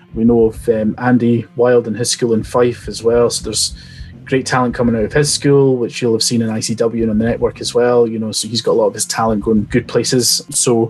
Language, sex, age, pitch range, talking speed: English, male, 20-39, 115-140 Hz, 265 wpm